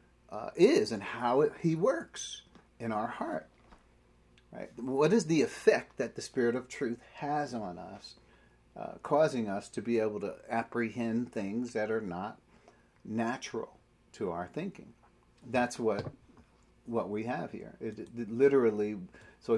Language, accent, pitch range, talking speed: English, American, 100-145 Hz, 155 wpm